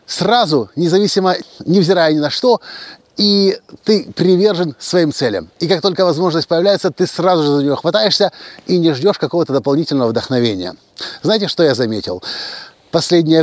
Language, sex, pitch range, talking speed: Russian, male, 145-195 Hz, 145 wpm